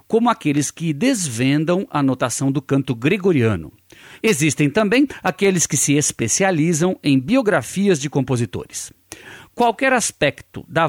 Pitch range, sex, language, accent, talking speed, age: 130-205 Hz, male, Portuguese, Brazilian, 120 wpm, 50-69